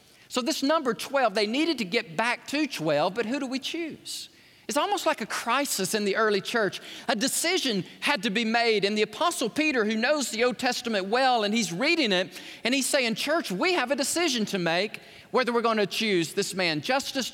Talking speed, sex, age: 220 wpm, male, 40-59